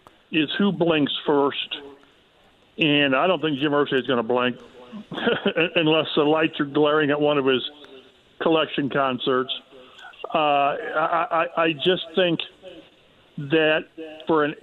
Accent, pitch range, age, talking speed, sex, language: American, 140-170 Hz, 50-69, 135 wpm, male, English